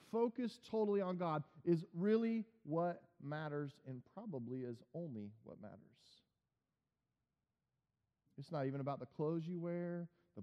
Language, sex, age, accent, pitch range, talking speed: English, male, 40-59, American, 145-190 Hz, 130 wpm